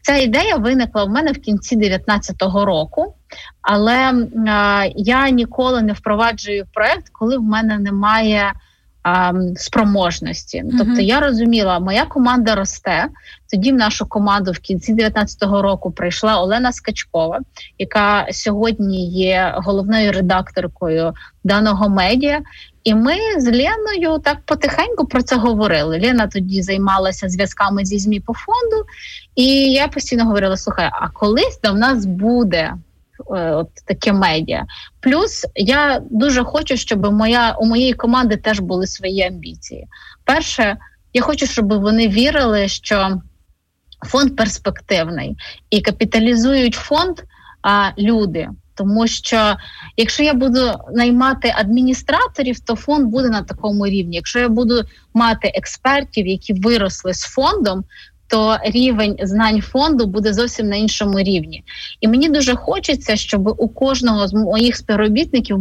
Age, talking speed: 20-39, 130 wpm